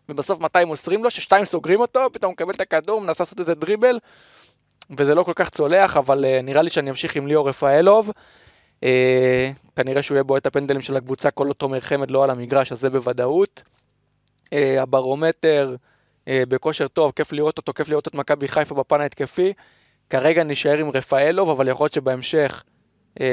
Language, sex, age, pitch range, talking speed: Hebrew, male, 20-39, 130-155 Hz, 195 wpm